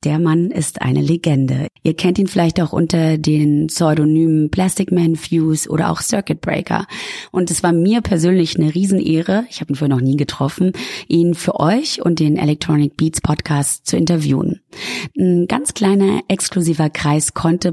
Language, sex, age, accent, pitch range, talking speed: English, female, 30-49, German, 150-180 Hz, 170 wpm